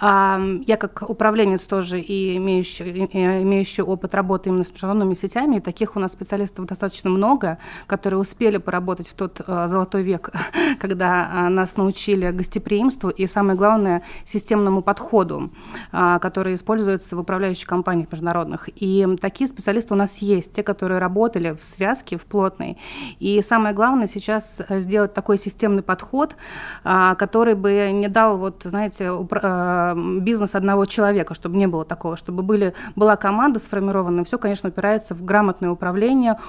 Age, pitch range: 30-49, 185-210 Hz